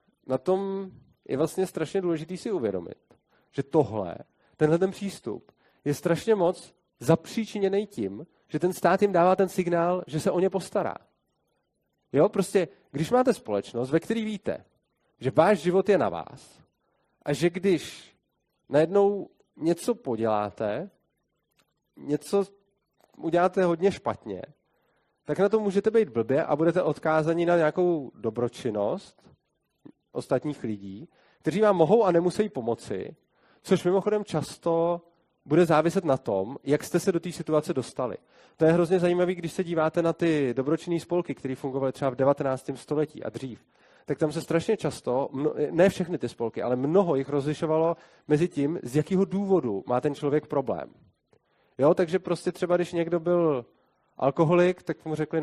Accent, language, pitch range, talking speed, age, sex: native, Czech, 140-185 Hz, 150 wpm, 30-49, male